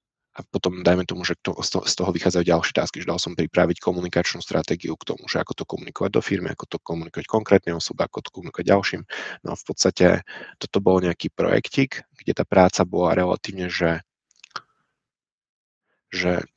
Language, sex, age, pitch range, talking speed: Czech, male, 20-39, 85-95 Hz, 180 wpm